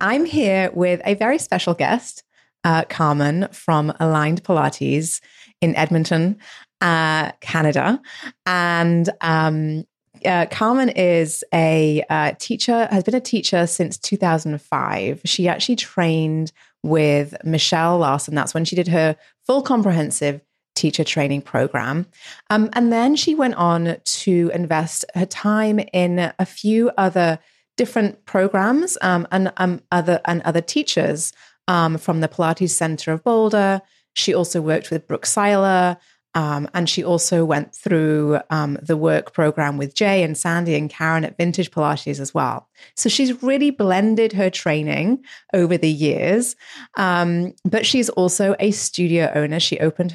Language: English